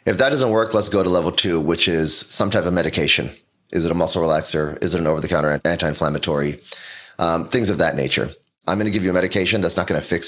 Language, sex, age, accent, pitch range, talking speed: English, male, 30-49, American, 80-105 Hz, 235 wpm